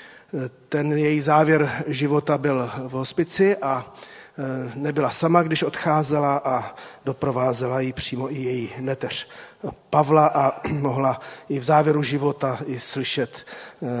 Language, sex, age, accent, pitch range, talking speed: Czech, male, 40-59, native, 130-150 Hz, 120 wpm